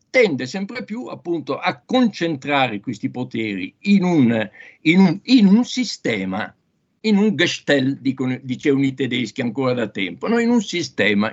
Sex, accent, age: male, native, 60-79